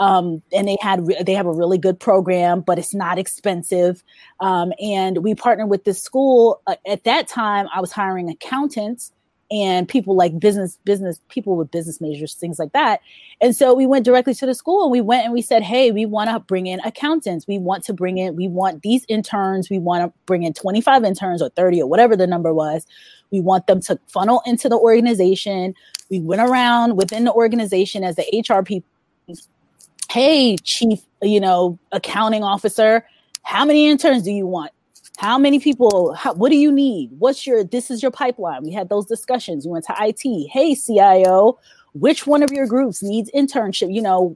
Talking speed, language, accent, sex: 200 wpm, English, American, female